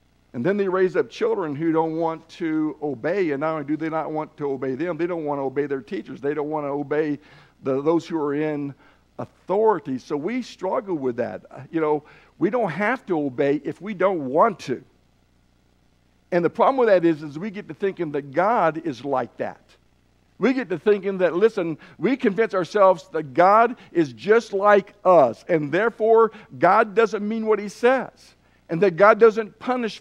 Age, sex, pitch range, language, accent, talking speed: 60-79, male, 155-220 Hz, English, American, 200 wpm